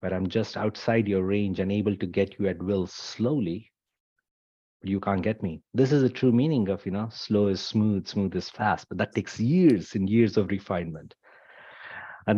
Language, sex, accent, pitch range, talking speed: English, male, Indian, 95-110 Hz, 205 wpm